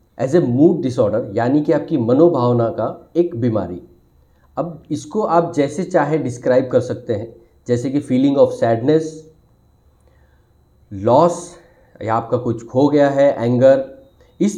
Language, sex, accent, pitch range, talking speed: Hindi, male, native, 115-155 Hz, 140 wpm